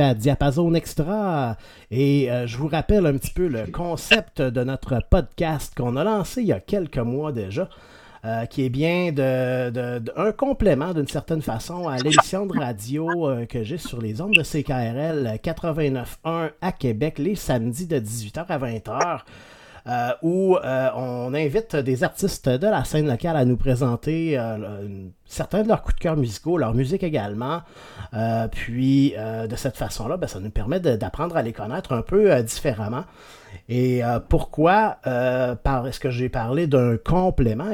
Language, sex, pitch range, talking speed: French, male, 120-160 Hz, 175 wpm